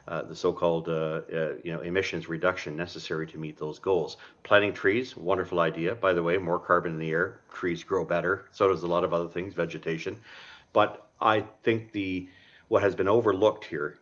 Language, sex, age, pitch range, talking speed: English, male, 50-69, 80-95 Hz, 195 wpm